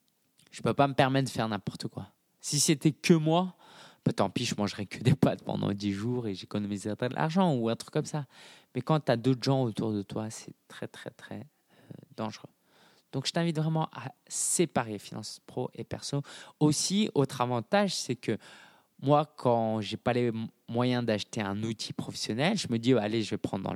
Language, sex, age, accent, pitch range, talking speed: French, male, 20-39, French, 115-160 Hz, 215 wpm